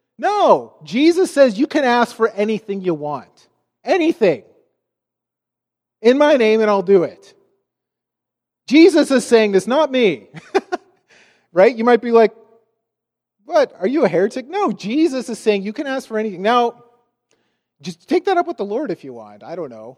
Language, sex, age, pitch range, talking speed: English, male, 30-49, 205-285 Hz, 170 wpm